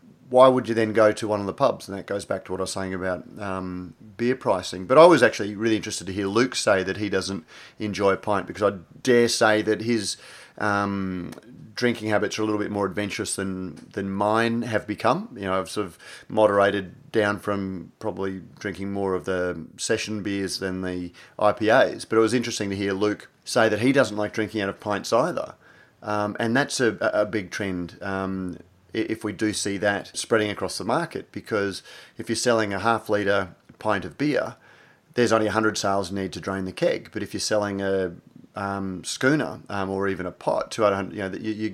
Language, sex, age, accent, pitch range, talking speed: English, male, 30-49, Australian, 95-110 Hz, 210 wpm